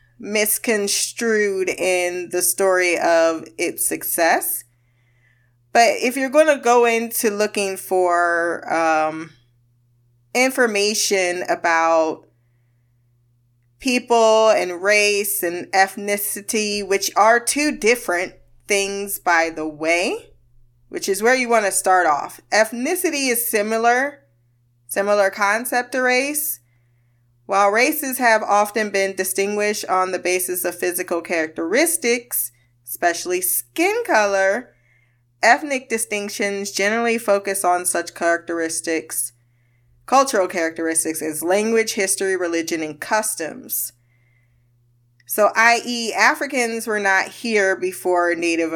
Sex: female